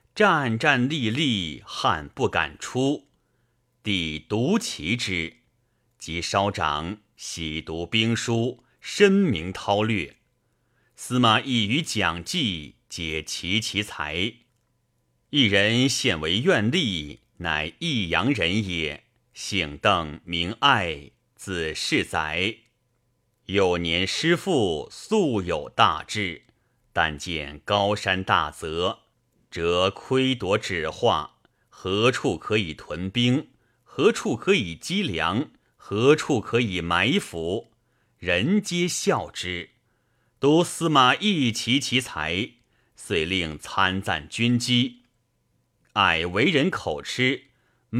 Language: Chinese